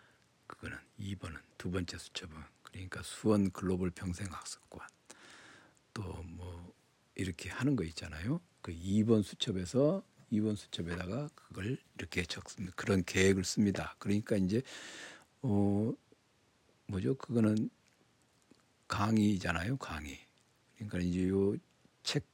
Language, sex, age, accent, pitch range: Korean, male, 60-79, native, 90-105 Hz